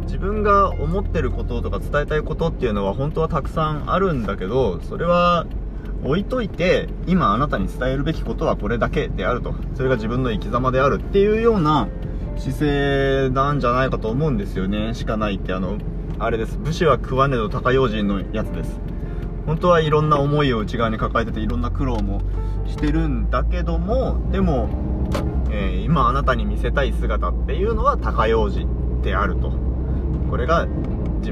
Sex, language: male, Japanese